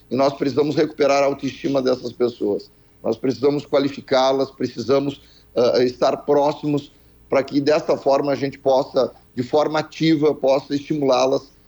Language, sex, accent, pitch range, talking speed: Portuguese, male, Brazilian, 120-145 Hz, 140 wpm